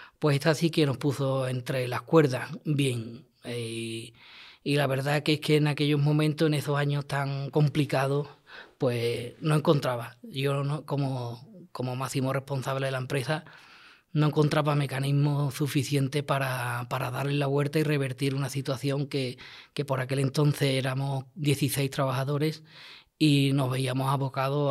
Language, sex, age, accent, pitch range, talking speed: Spanish, female, 20-39, Spanish, 125-150 Hz, 150 wpm